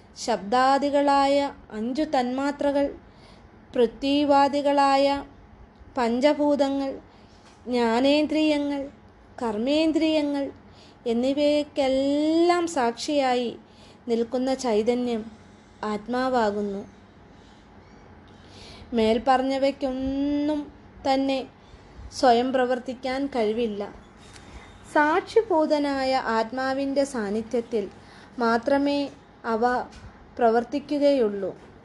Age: 20-39